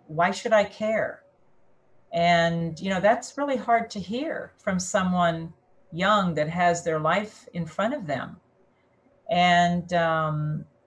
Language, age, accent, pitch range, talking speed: English, 50-69, American, 155-195 Hz, 140 wpm